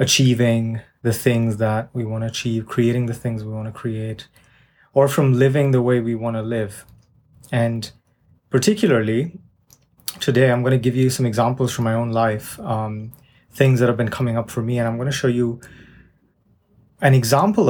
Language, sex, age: English, male, 30-49